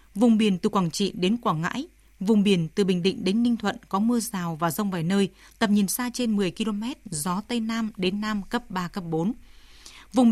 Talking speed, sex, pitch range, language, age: 225 wpm, female, 190-235 Hz, Vietnamese, 20-39